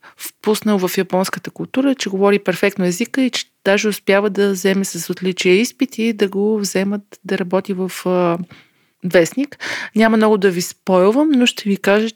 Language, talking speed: Bulgarian, 175 wpm